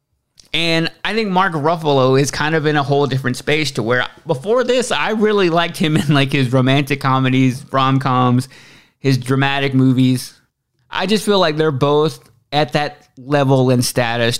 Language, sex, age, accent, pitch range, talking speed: English, male, 20-39, American, 125-160 Hz, 170 wpm